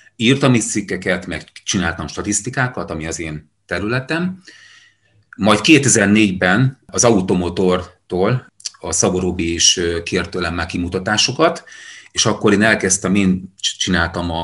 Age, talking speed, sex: 30-49, 105 wpm, male